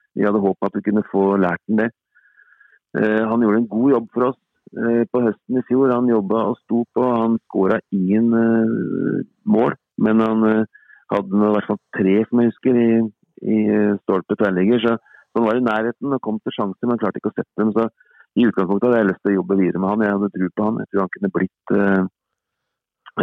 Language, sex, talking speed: English, male, 225 wpm